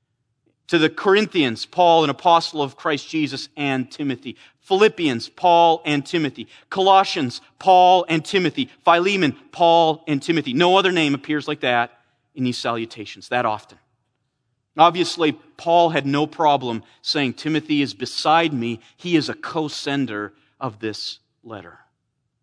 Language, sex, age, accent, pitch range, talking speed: English, male, 40-59, American, 130-185 Hz, 135 wpm